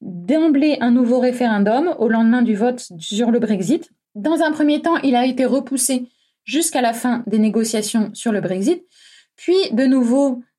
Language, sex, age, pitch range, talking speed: French, female, 20-39, 235-290 Hz, 170 wpm